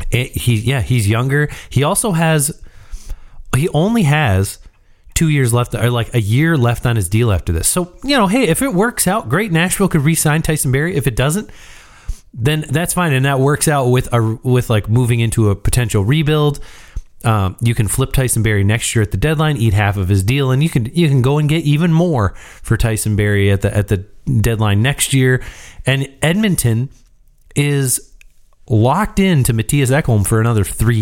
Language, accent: English, American